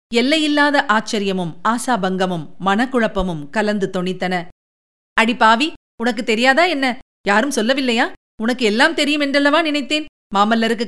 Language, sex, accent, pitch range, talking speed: Tamil, female, native, 205-265 Hz, 110 wpm